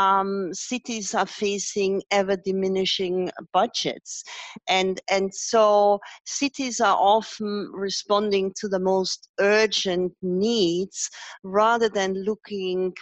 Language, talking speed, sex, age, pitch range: English, 95 wpm, female, 40-59, 185-220 Hz